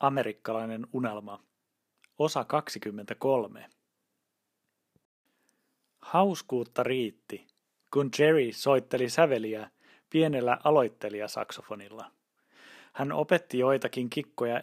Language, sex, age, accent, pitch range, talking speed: Finnish, male, 30-49, native, 120-160 Hz, 65 wpm